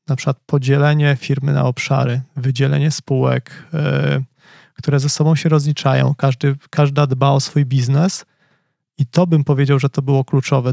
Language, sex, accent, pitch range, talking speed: Polish, male, native, 140-160 Hz, 145 wpm